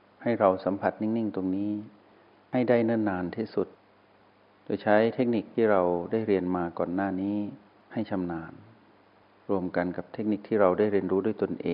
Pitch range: 95-110 Hz